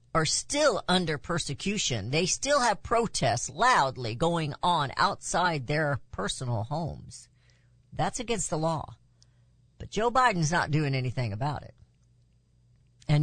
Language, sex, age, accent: English, female, 50-69, American